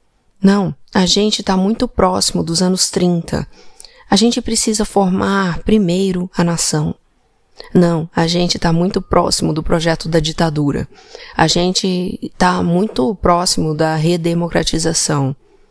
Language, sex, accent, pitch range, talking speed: Portuguese, female, Brazilian, 165-205 Hz, 125 wpm